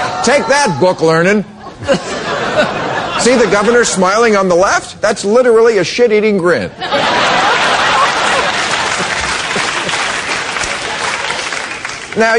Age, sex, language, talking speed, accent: 50-69, male, English, 80 wpm, American